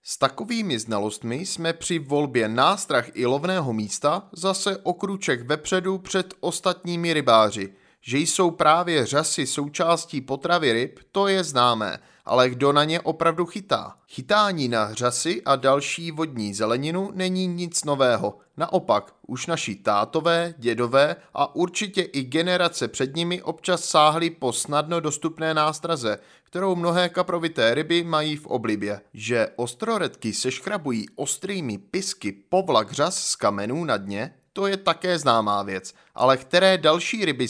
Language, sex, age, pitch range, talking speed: Czech, male, 30-49, 125-180 Hz, 140 wpm